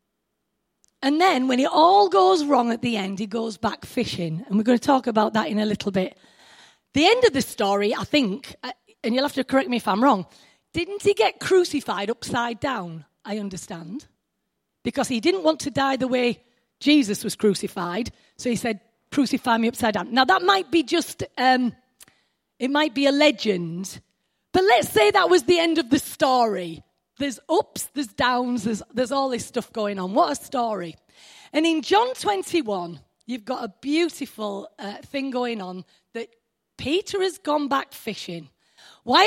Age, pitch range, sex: 30-49, 220-315 Hz, female